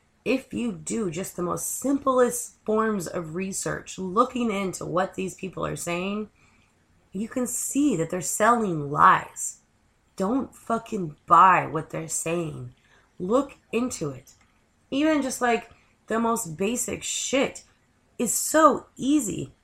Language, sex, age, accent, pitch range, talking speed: English, female, 20-39, American, 155-225 Hz, 130 wpm